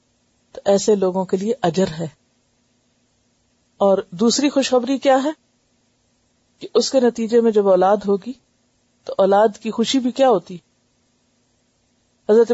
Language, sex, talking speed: Urdu, female, 130 wpm